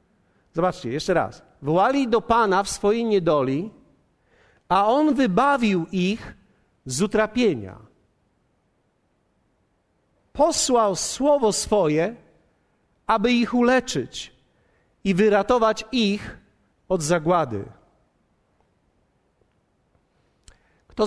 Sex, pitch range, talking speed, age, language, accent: male, 170-230 Hz, 75 wpm, 50-69, Polish, native